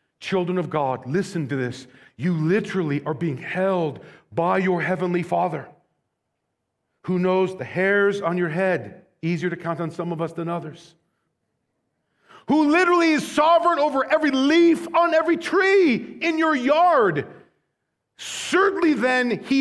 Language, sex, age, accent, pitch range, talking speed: English, male, 40-59, American, 185-275 Hz, 145 wpm